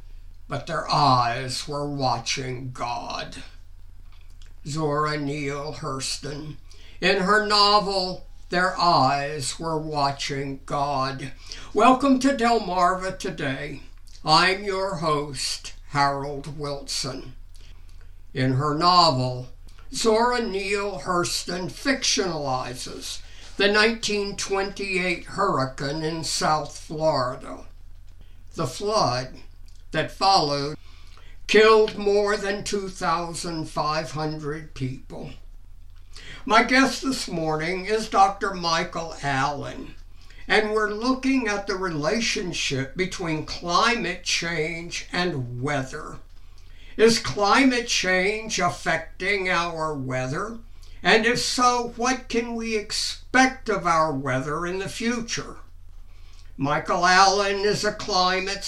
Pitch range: 130-200 Hz